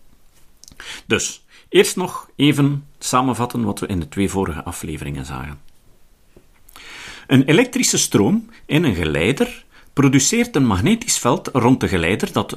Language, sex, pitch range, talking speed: Dutch, male, 95-155 Hz, 130 wpm